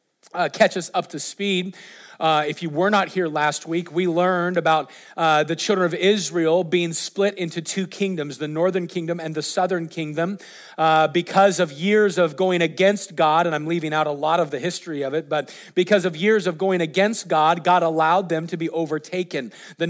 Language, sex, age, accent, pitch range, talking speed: English, male, 40-59, American, 160-190 Hz, 205 wpm